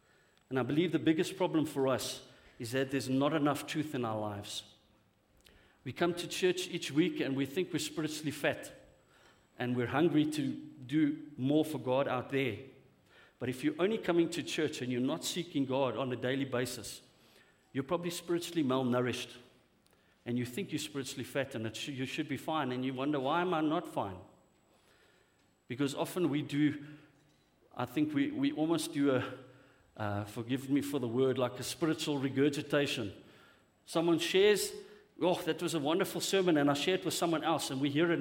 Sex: male